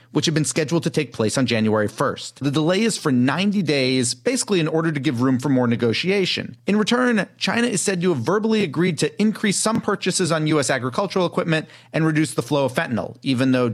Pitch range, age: 125-180 Hz, 40-59